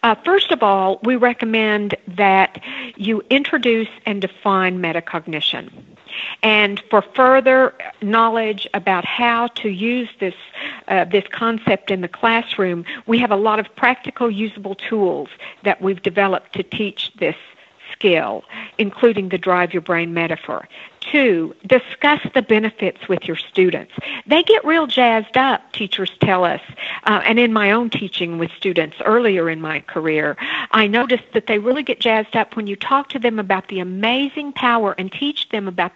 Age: 60-79